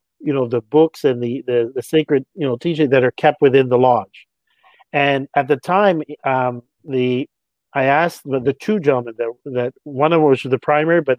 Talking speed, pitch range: 210 wpm, 130-155 Hz